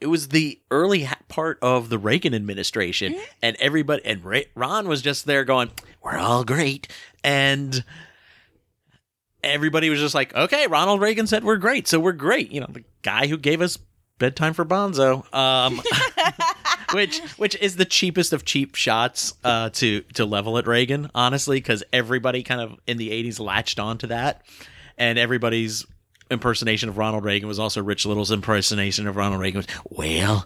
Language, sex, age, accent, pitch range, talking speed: English, male, 30-49, American, 110-150 Hz, 170 wpm